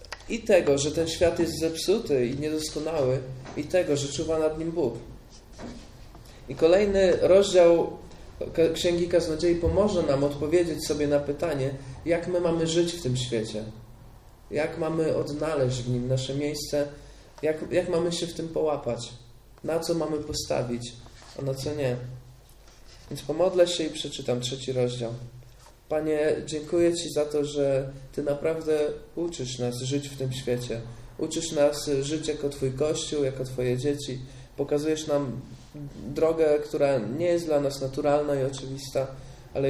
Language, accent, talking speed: Polish, native, 150 wpm